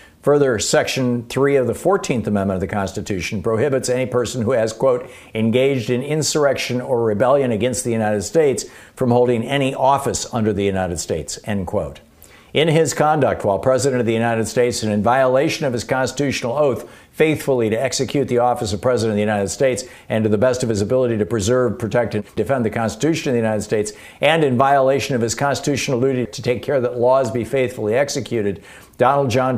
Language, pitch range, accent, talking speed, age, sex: English, 115-135 Hz, American, 195 wpm, 60-79, male